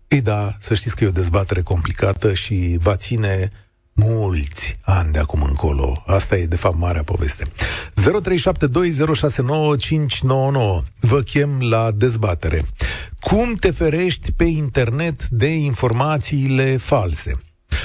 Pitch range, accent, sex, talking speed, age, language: 95-130 Hz, native, male, 120 wpm, 40-59, Romanian